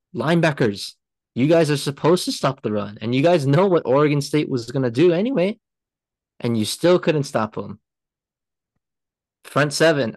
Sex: male